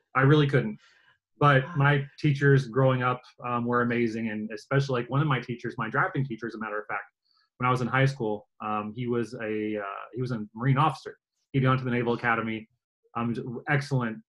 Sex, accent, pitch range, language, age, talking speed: male, American, 115-140 Hz, English, 30-49, 210 wpm